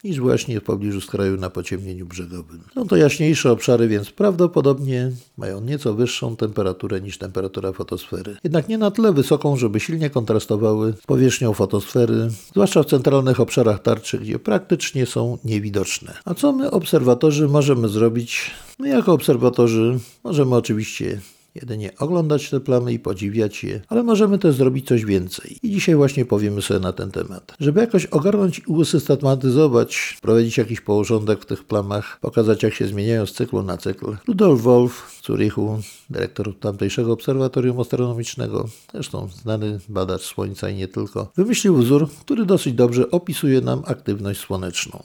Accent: native